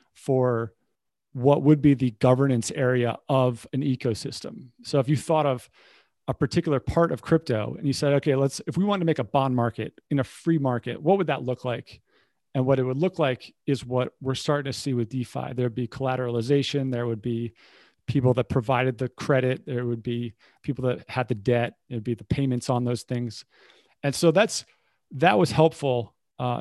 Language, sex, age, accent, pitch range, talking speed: English, male, 40-59, American, 120-140 Hz, 200 wpm